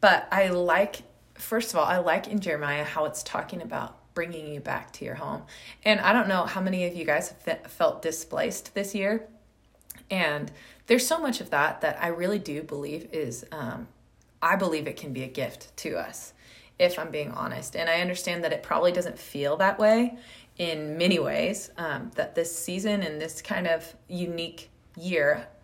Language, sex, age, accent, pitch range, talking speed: English, female, 20-39, American, 150-200 Hz, 195 wpm